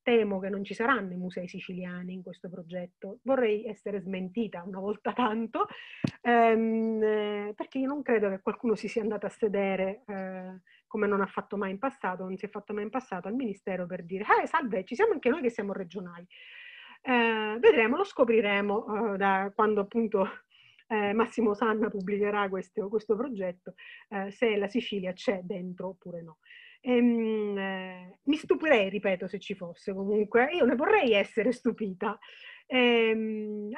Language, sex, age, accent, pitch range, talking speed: Italian, female, 30-49, native, 195-245 Hz, 165 wpm